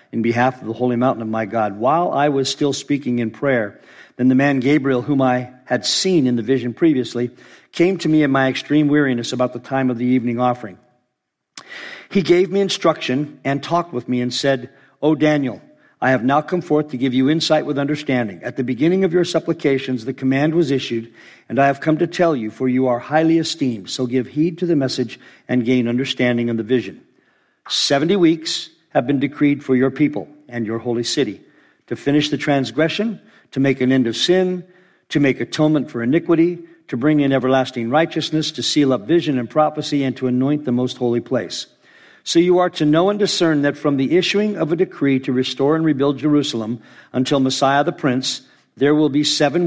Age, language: 50-69, English